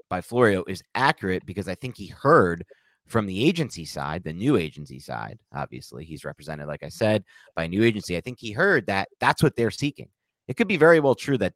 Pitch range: 85-125 Hz